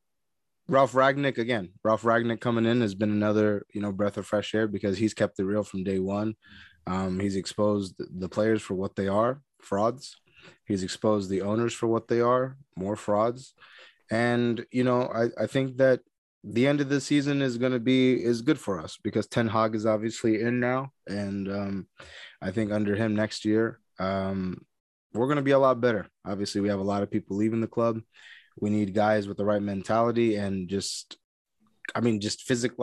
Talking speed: 200 wpm